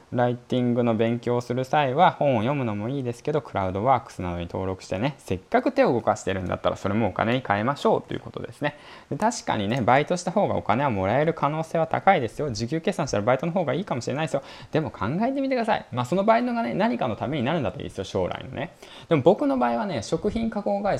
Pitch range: 95-145 Hz